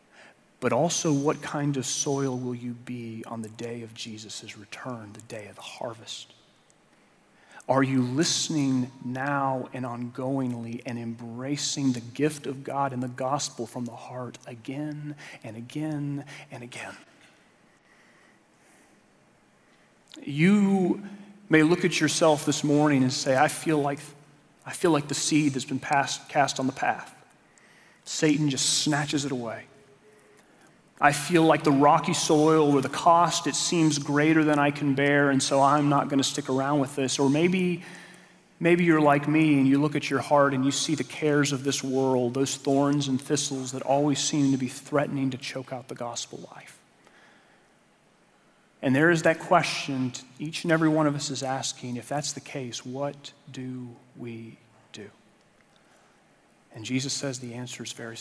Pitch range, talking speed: 130-150 Hz, 165 wpm